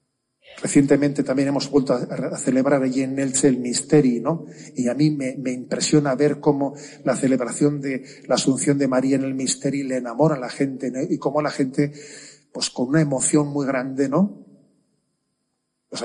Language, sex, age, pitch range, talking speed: Spanish, male, 40-59, 130-160 Hz, 180 wpm